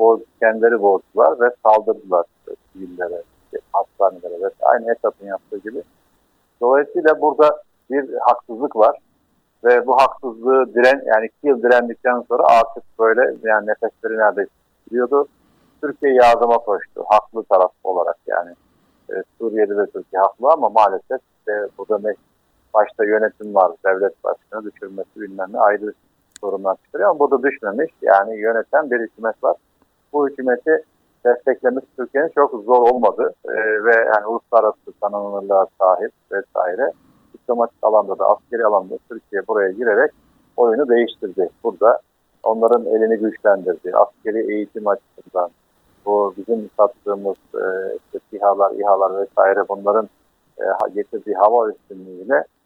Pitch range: 105-145 Hz